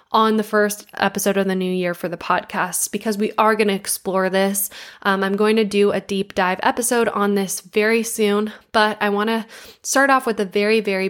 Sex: female